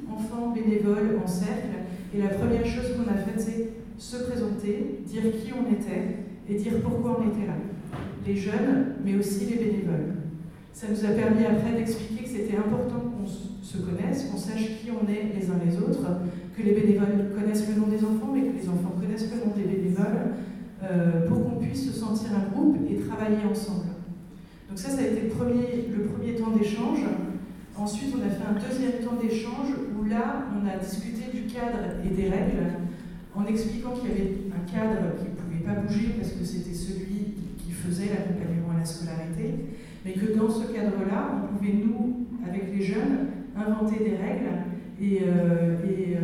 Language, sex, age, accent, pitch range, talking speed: French, female, 40-59, French, 195-225 Hz, 185 wpm